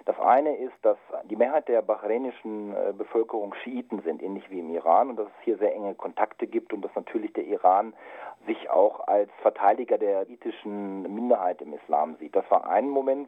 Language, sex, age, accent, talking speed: German, male, 40-59, German, 190 wpm